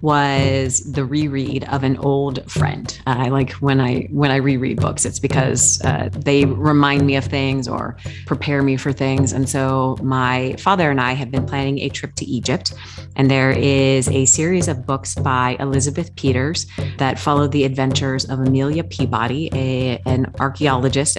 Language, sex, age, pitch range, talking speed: English, female, 30-49, 125-140 Hz, 175 wpm